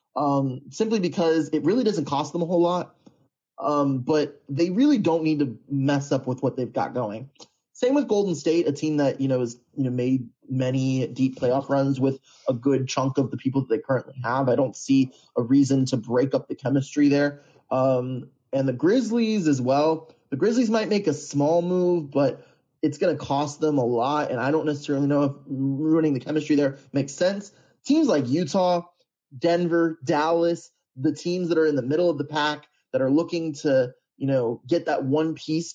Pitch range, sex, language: 140-170 Hz, male, English